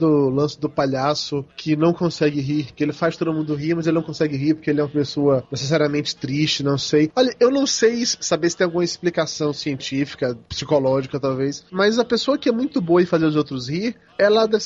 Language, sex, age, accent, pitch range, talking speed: Portuguese, male, 20-39, Brazilian, 155-215 Hz, 220 wpm